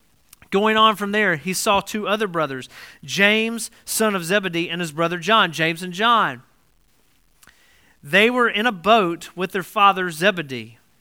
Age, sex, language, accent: 40-59, male, English, American